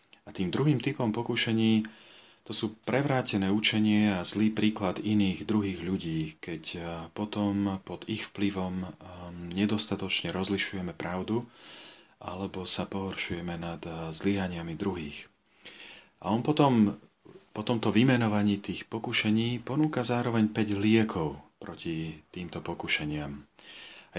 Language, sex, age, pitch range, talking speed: Slovak, male, 40-59, 95-110 Hz, 110 wpm